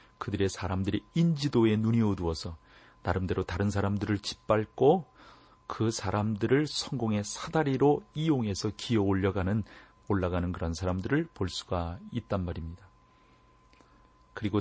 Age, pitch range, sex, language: 40-59, 95-120 Hz, male, Korean